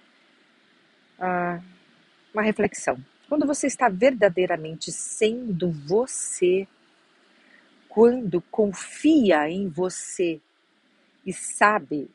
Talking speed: 70 wpm